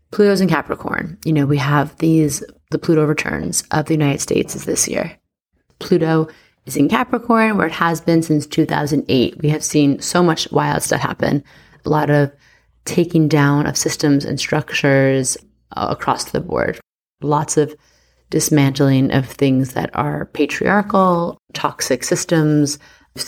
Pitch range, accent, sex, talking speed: 140-165 Hz, American, female, 155 wpm